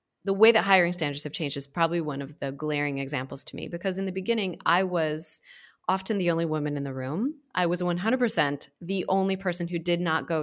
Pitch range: 145-195 Hz